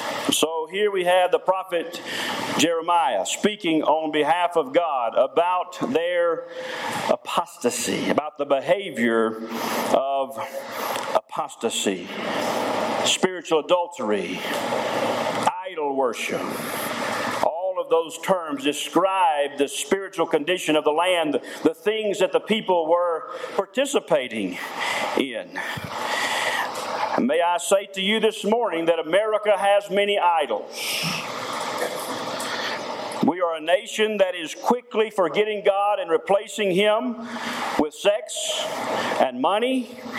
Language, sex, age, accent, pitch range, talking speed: English, male, 50-69, American, 175-260 Hz, 105 wpm